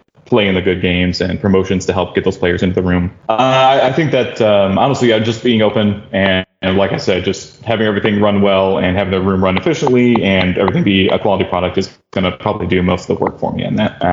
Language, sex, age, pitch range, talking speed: English, male, 20-39, 90-105 Hz, 250 wpm